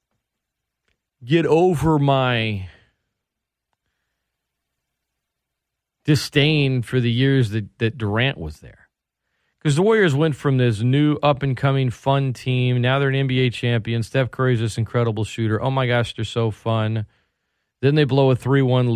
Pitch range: 105-135 Hz